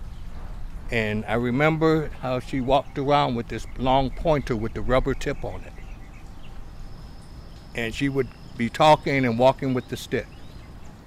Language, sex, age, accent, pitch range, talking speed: English, male, 60-79, American, 105-155 Hz, 145 wpm